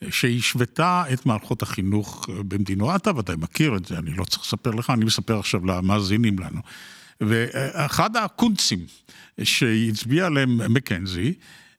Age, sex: 60-79, male